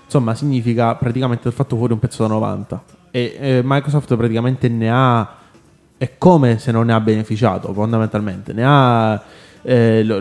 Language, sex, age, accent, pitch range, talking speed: Italian, male, 20-39, native, 105-130 Hz, 165 wpm